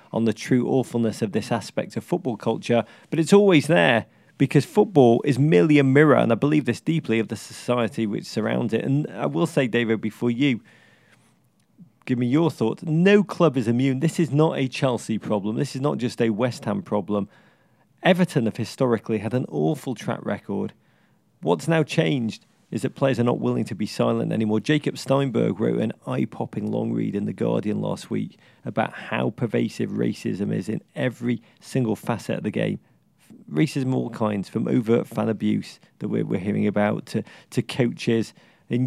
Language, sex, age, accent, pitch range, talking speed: English, male, 40-59, British, 115-145 Hz, 190 wpm